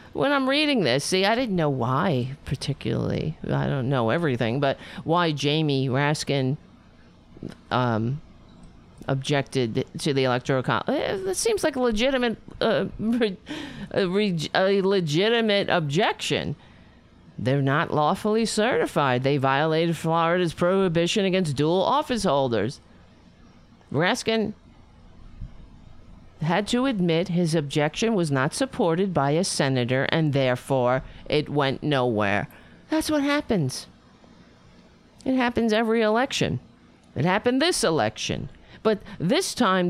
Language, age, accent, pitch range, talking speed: English, 50-69, American, 135-215 Hz, 115 wpm